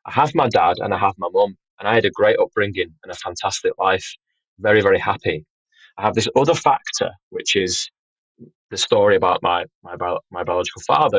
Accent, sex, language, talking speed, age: British, male, English, 200 wpm, 20-39